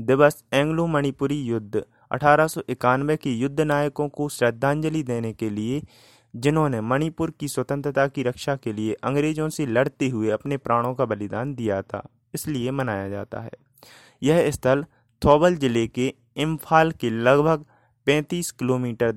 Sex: male